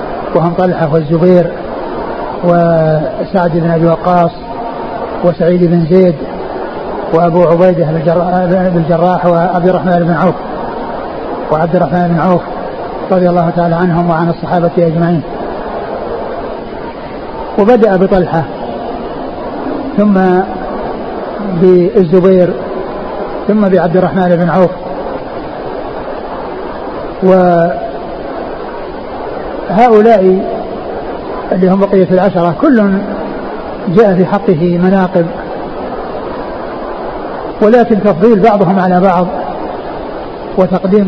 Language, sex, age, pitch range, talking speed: Arabic, male, 60-79, 175-200 Hz, 80 wpm